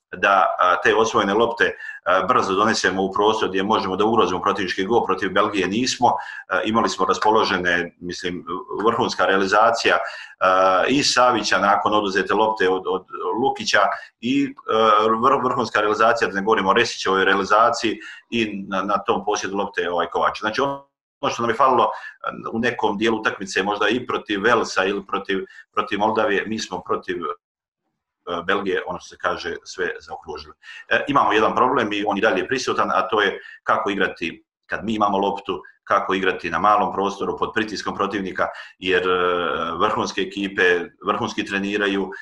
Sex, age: male, 40-59